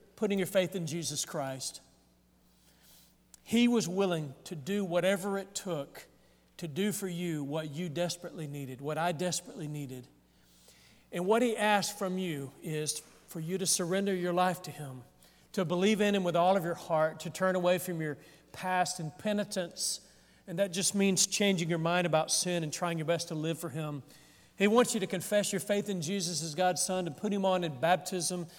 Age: 40-59